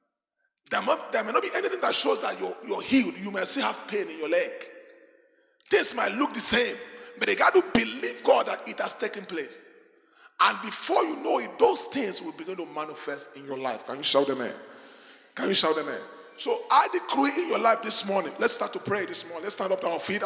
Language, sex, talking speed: English, male, 240 wpm